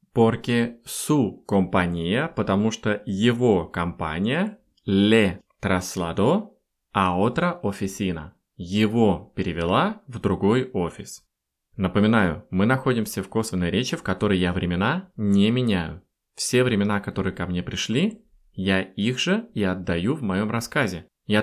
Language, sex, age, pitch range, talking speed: Russian, male, 20-39, 95-130 Hz, 120 wpm